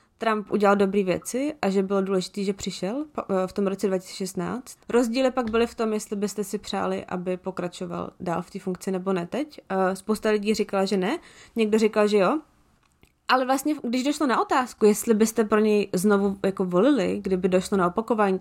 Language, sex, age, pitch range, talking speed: Czech, female, 20-39, 195-260 Hz, 190 wpm